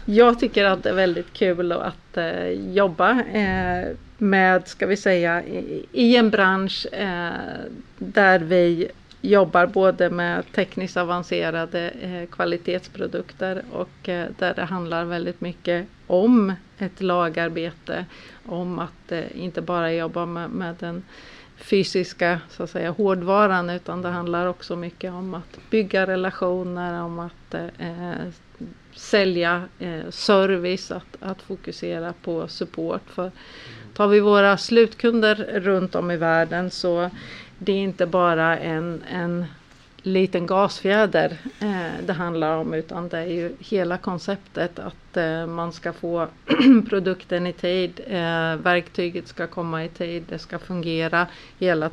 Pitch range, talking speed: 170-190 Hz, 120 wpm